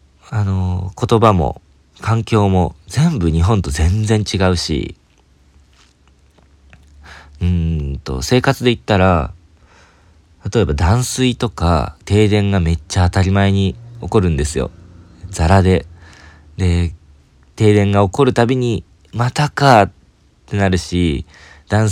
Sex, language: male, Japanese